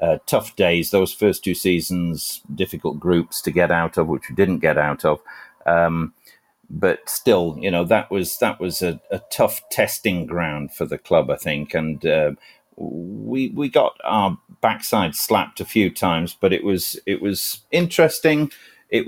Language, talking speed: English, 175 wpm